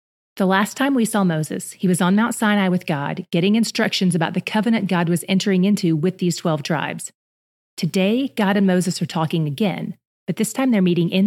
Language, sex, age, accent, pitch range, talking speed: English, female, 30-49, American, 170-205 Hz, 210 wpm